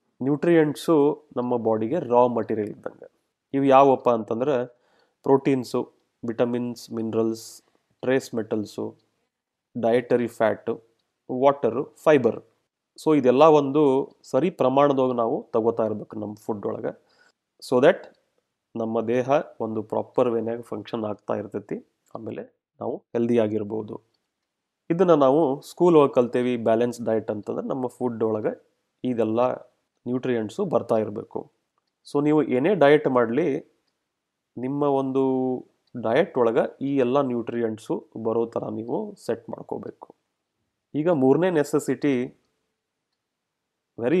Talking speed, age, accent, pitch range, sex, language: 105 wpm, 30-49, native, 115-140 Hz, male, Kannada